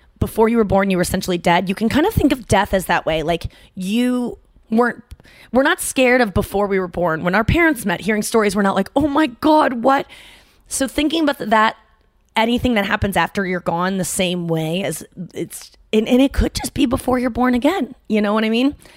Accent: American